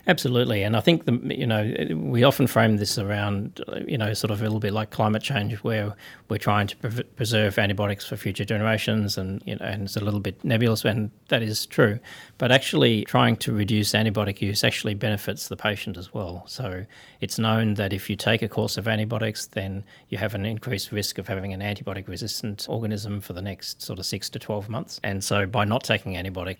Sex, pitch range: male, 100-110 Hz